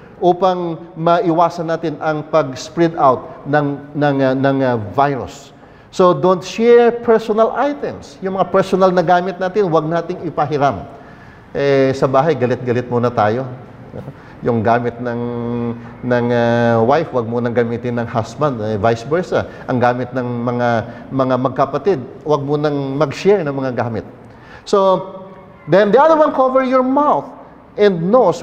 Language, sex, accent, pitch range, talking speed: English, male, Filipino, 125-180 Hz, 150 wpm